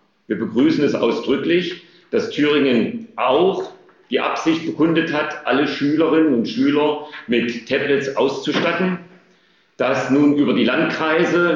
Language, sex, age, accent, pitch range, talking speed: German, male, 40-59, German, 130-170 Hz, 120 wpm